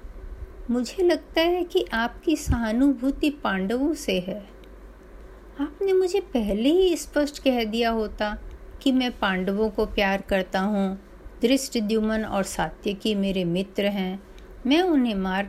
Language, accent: Hindi, native